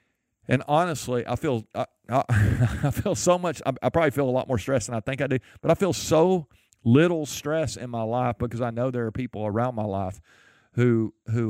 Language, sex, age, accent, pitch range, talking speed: English, male, 50-69, American, 110-145 Hz, 220 wpm